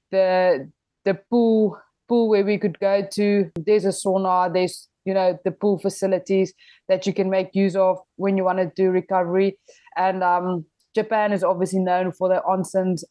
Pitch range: 180-200 Hz